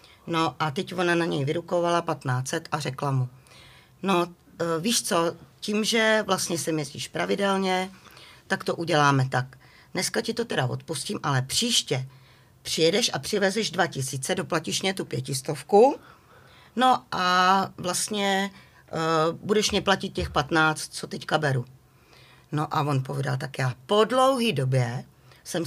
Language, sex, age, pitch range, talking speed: Czech, female, 40-59, 145-190 Hz, 145 wpm